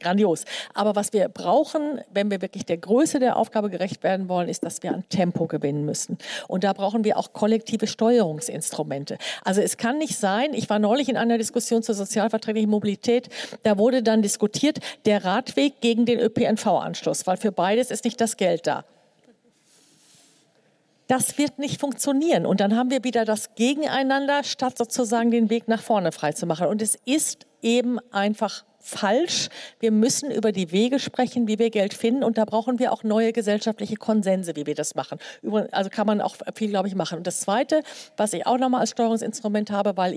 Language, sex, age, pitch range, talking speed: German, female, 50-69, 195-245 Hz, 185 wpm